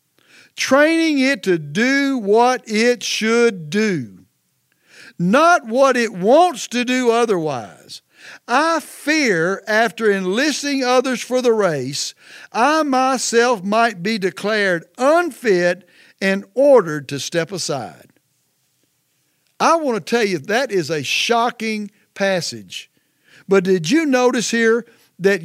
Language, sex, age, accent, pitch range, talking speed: English, male, 60-79, American, 180-240 Hz, 120 wpm